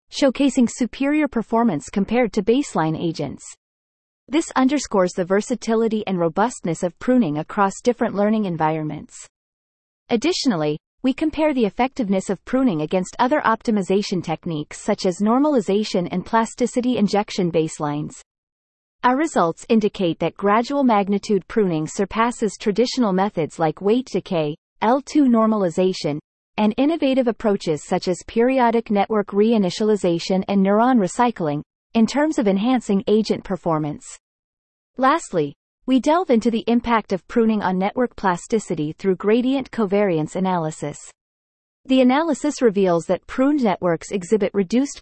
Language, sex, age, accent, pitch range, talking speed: English, female, 30-49, American, 185-245 Hz, 125 wpm